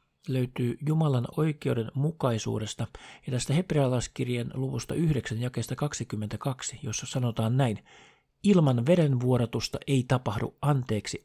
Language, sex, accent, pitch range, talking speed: Finnish, male, native, 110-140 Hz, 95 wpm